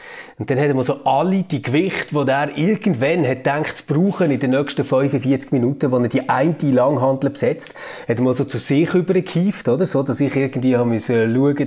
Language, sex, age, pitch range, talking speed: German, male, 30-49, 130-175 Hz, 195 wpm